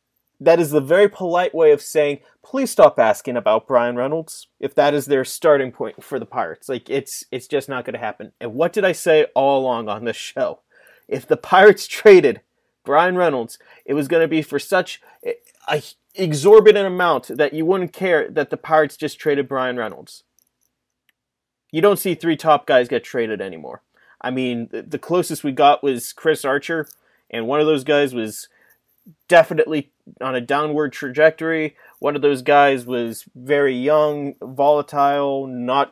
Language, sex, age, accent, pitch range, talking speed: English, male, 30-49, American, 140-180 Hz, 175 wpm